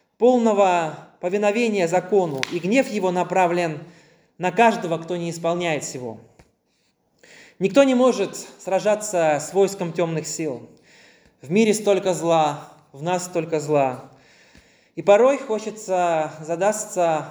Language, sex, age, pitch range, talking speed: Russian, male, 20-39, 165-210 Hz, 115 wpm